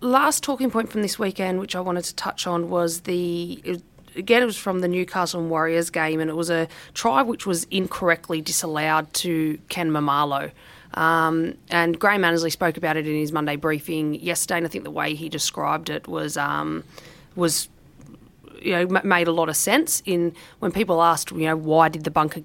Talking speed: 200 wpm